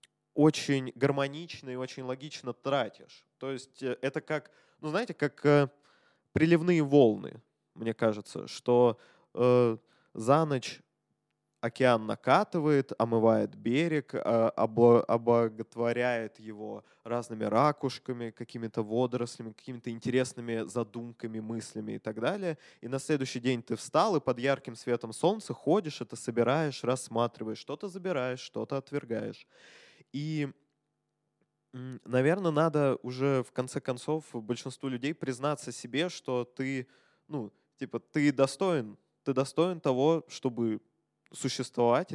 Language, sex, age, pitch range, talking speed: Russian, male, 20-39, 120-145 Hz, 115 wpm